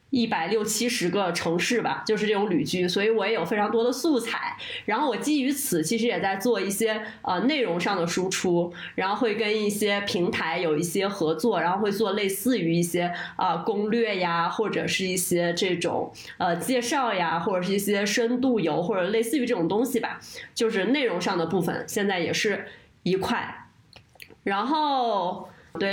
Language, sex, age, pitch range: Chinese, female, 20-39, 180-245 Hz